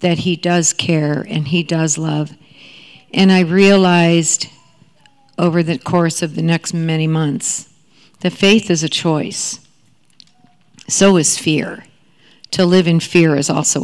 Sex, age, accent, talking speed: female, 50-69, American, 145 wpm